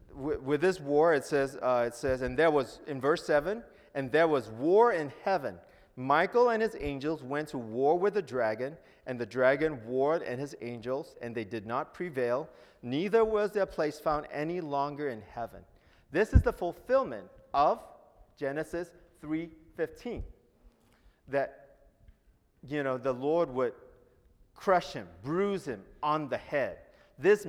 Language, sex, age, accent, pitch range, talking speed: English, male, 40-59, American, 130-190 Hz, 155 wpm